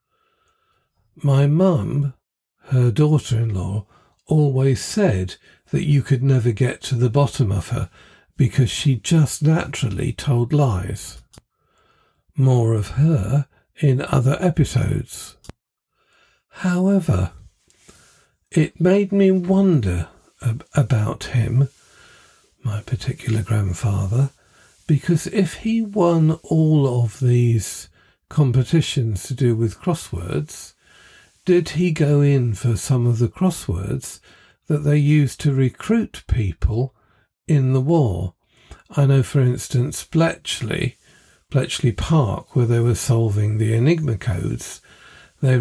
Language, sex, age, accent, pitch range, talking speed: English, male, 50-69, British, 115-150 Hz, 110 wpm